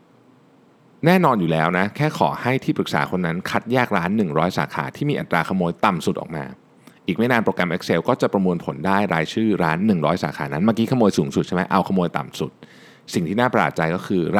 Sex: male